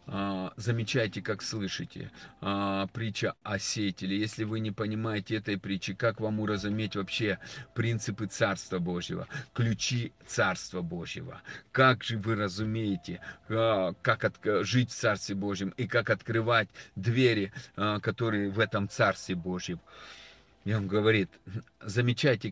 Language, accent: Russian, native